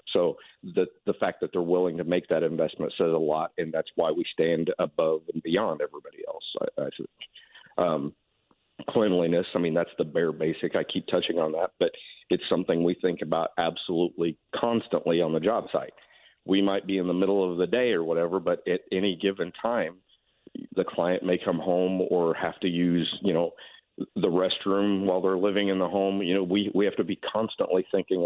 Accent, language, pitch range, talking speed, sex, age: American, English, 85-105 Hz, 200 wpm, male, 50-69